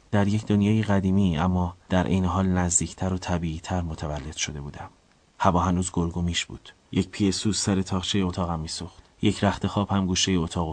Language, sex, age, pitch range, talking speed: Persian, male, 30-49, 85-100 Hz, 160 wpm